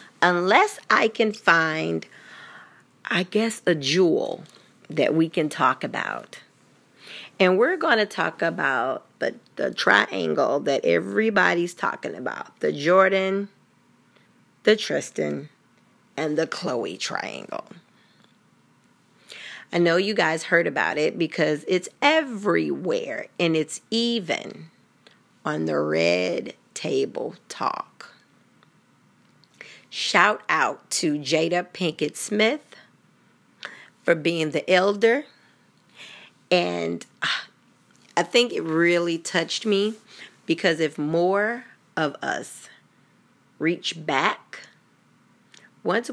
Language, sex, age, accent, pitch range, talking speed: English, female, 40-59, American, 155-210 Hz, 100 wpm